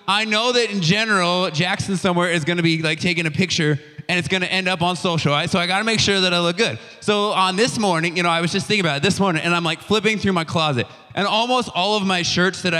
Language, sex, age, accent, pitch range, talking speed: English, male, 20-39, American, 145-195 Hz, 290 wpm